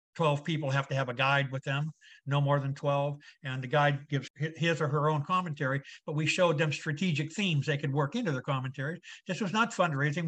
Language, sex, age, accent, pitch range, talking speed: English, male, 50-69, American, 140-165 Hz, 220 wpm